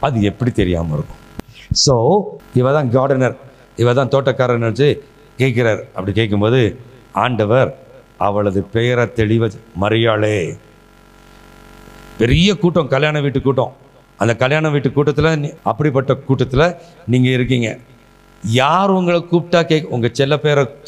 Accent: native